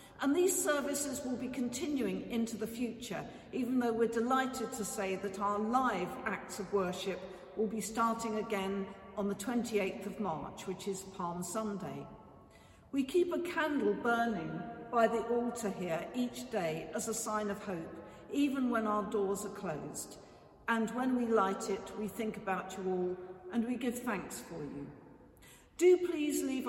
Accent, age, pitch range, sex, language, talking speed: British, 50-69, 200-245 Hz, female, English, 170 wpm